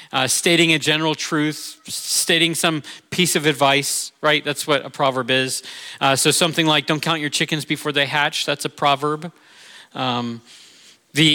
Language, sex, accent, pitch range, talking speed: English, male, American, 145-185 Hz, 170 wpm